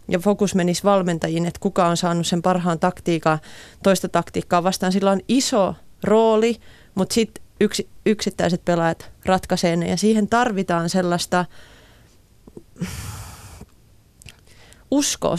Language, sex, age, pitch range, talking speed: Finnish, female, 30-49, 175-210 Hz, 115 wpm